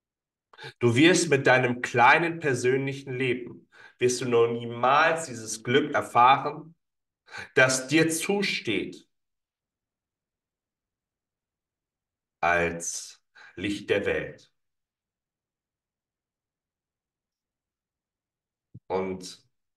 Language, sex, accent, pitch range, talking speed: German, male, German, 110-145 Hz, 65 wpm